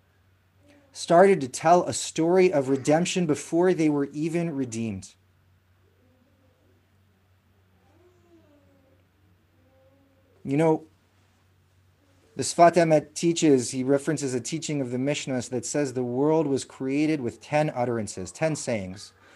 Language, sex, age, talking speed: English, male, 30-49, 110 wpm